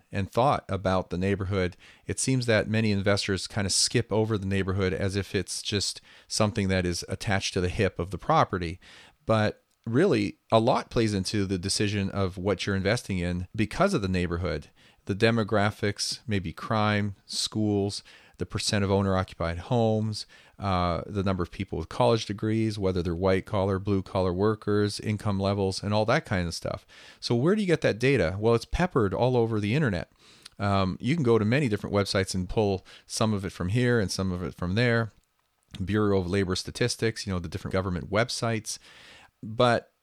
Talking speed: 185 wpm